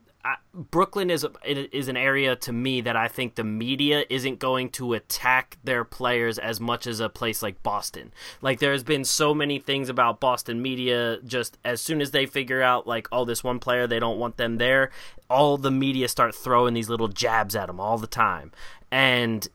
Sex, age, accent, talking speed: male, 20-39, American, 205 wpm